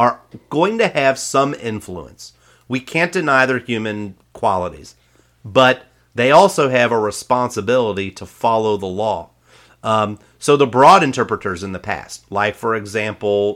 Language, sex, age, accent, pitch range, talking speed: English, male, 40-59, American, 95-125 Hz, 145 wpm